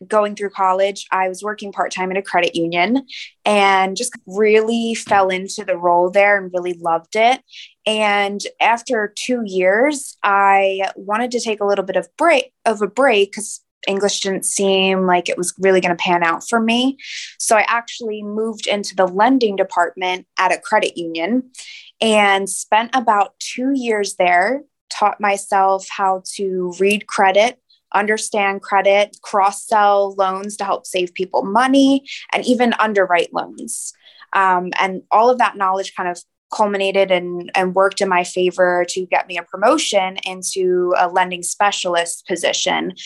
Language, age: English, 20-39